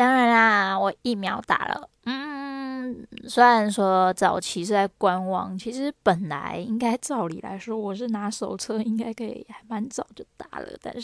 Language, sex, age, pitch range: Chinese, female, 10-29, 195-255 Hz